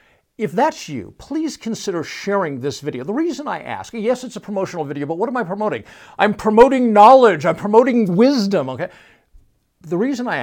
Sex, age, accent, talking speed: male, 60-79, American, 185 wpm